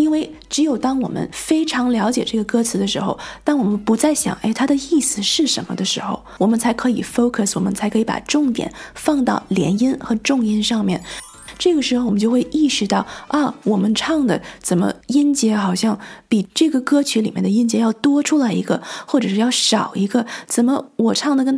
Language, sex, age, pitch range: Chinese, female, 20-39, 220-270 Hz